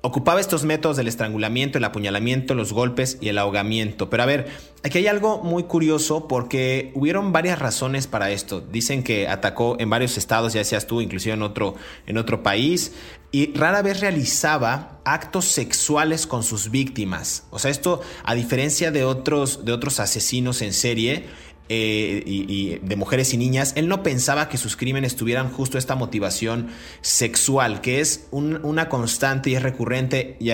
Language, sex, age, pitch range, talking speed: Spanish, male, 30-49, 105-135 Hz, 170 wpm